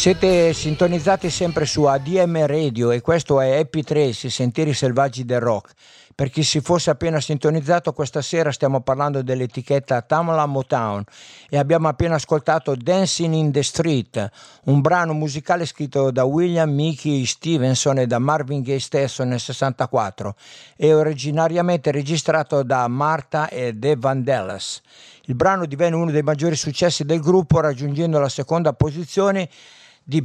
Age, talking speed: 60-79, 145 wpm